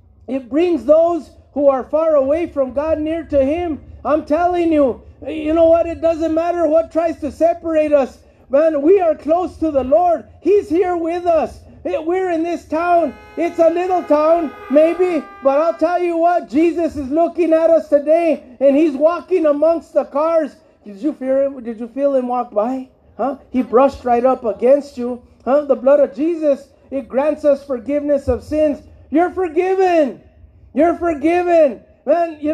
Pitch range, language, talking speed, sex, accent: 285-335 Hz, English, 180 wpm, male, American